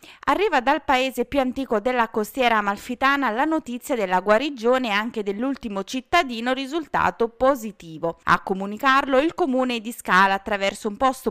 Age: 30-49